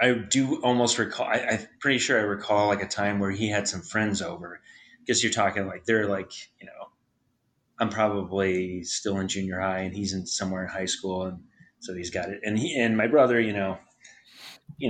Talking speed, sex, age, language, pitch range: 215 wpm, male, 30-49, English, 95-115 Hz